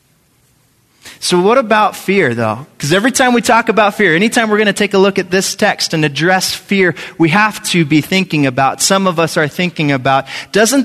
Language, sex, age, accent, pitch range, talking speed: English, male, 30-49, American, 140-210 Hz, 210 wpm